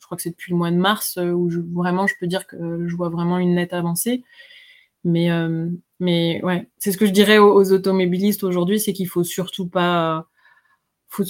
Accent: French